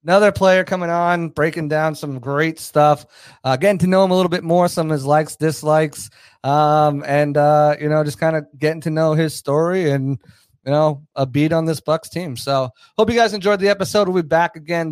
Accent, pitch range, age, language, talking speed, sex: American, 140-170 Hz, 30-49, English, 225 wpm, male